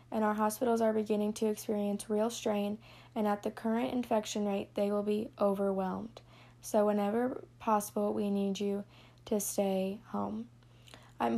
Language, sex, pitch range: English, female, 195-225 Hz